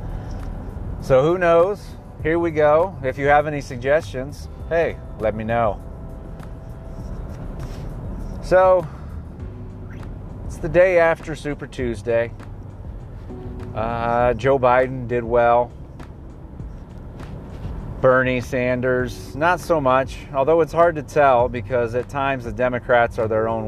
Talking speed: 115 wpm